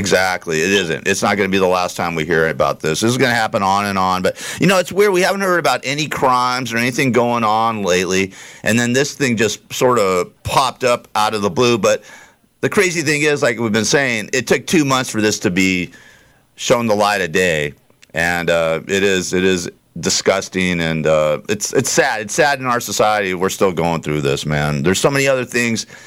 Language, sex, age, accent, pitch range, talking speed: English, male, 50-69, American, 95-145 Hz, 235 wpm